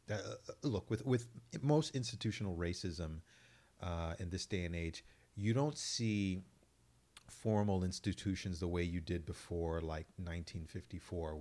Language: English